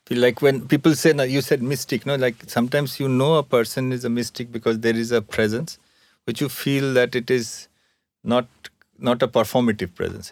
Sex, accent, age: male, Indian, 50-69